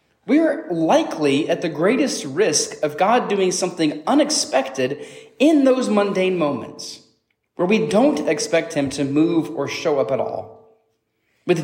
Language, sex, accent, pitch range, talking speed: English, male, American, 150-200 Hz, 150 wpm